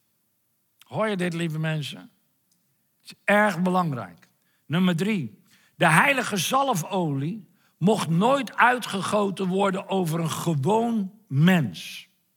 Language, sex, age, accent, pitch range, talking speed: Dutch, male, 60-79, Dutch, 170-240 Hz, 105 wpm